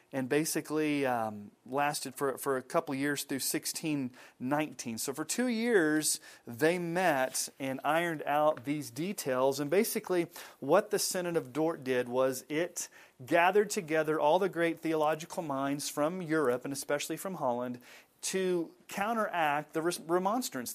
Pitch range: 140-180 Hz